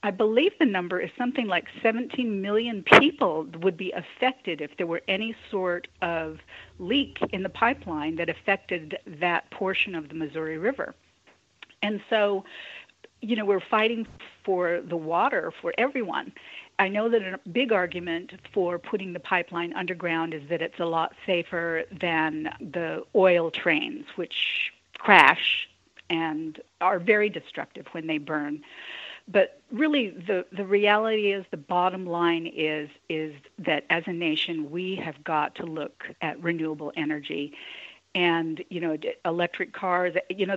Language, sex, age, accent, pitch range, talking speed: English, female, 50-69, American, 165-205 Hz, 150 wpm